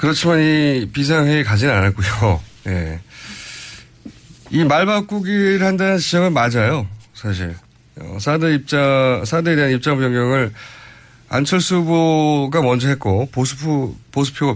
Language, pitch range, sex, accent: Korean, 115-160 Hz, male, native